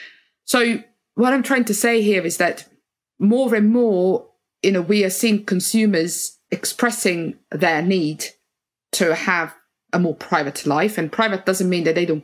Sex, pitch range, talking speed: female, 160-205 Hz, 165 wpm